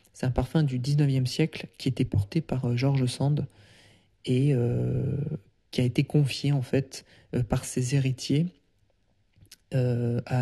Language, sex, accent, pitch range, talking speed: French, male, French, 115-140 Hz, 150 wpm